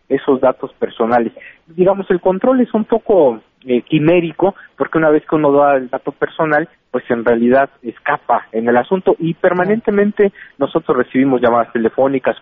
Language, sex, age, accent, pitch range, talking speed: Spanish, male, 40-59, Mexican, 125-160 Hz, 160 wpm